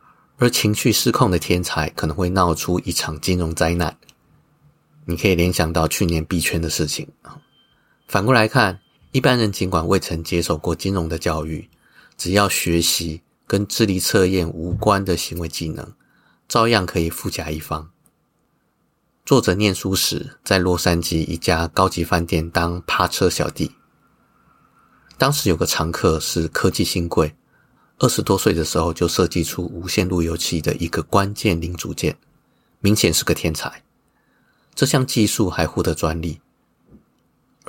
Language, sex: Chinese, male